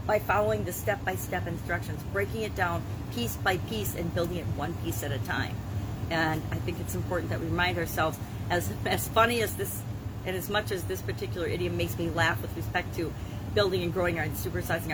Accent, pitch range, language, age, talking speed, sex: American, 100-120 Hz, English, 40-59, 205 wpm, female